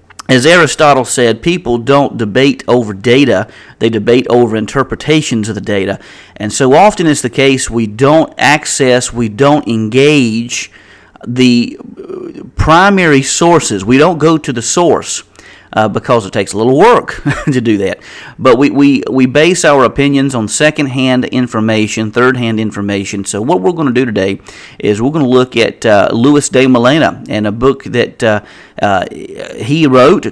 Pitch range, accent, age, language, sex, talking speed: 110-140 Hz, American, 40-59, English, male, 160 wpm